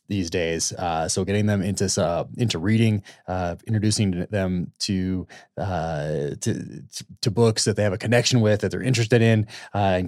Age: 20-39